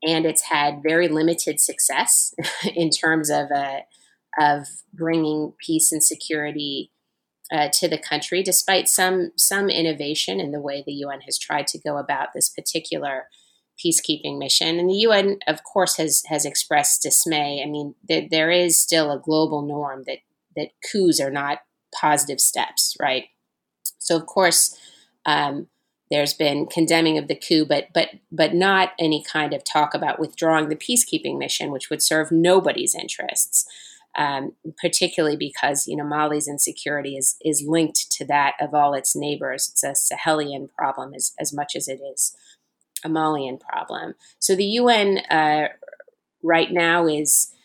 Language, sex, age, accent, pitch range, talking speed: English, female, 30-49, American, 145-170 Hz, 160 wpm